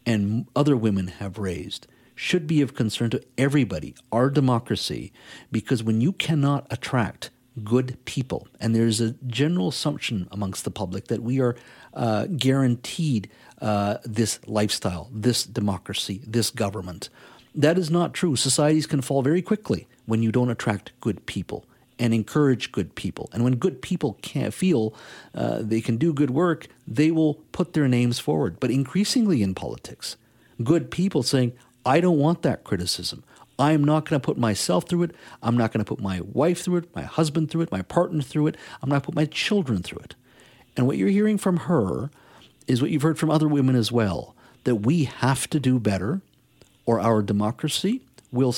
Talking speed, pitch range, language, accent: 185 wpm, 115-155 Hz, English, American